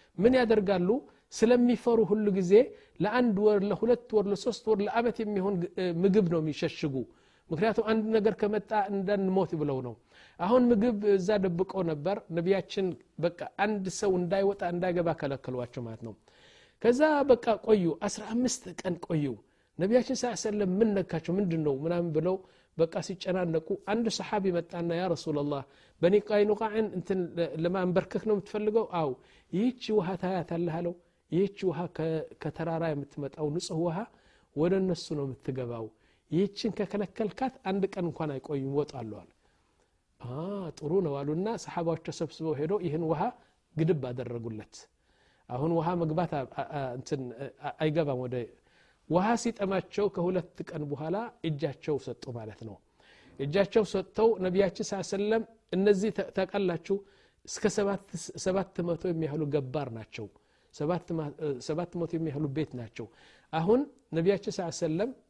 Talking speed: 110 wpm